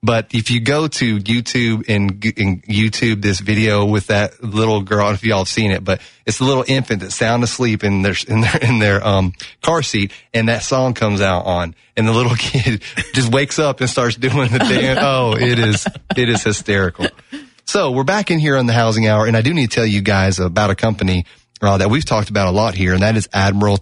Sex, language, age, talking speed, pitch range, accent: male, English, 30-49, 250 wpm, 100-125 Hz, American